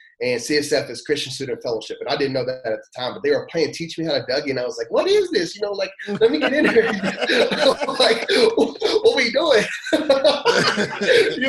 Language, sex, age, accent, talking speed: English, male, 20-39, American, 230 wpm